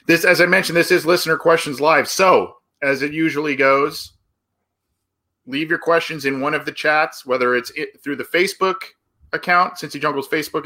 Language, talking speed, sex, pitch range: English, 180 wpm, male, 120-150 Hz